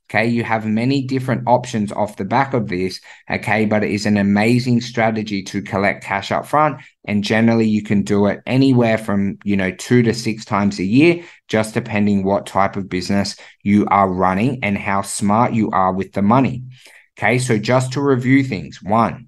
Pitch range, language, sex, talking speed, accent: 100-120 Hz, English, male, 195 wpm, Australian